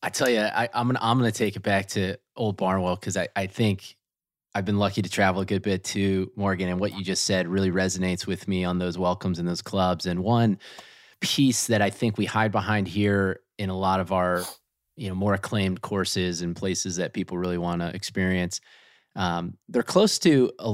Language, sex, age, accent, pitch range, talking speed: English, male, 20-39, American, 95-110 Hz, 220 wpm